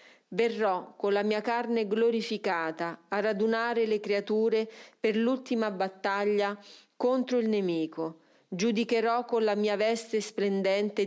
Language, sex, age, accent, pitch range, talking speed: Italian, female, 40-59, native, 195-225 Hz, 120 wpm